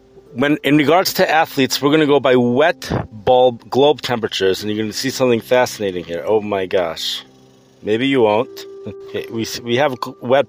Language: English